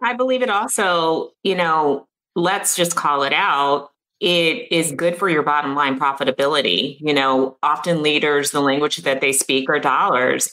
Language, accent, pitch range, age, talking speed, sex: English, American, 140-175 Hz, 30-49, 170 wpm, female